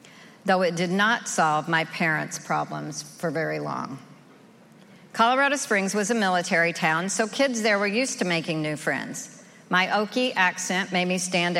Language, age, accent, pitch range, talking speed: English, 50-69, American, 165-210 Hz, 165 wpm